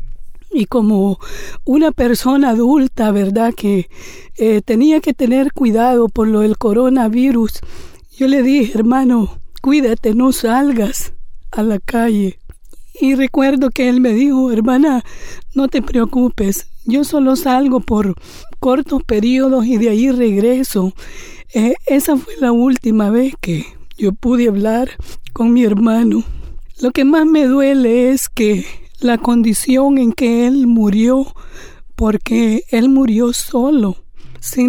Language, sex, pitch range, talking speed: Spanish, female, 225-265 Hz, 135 wpm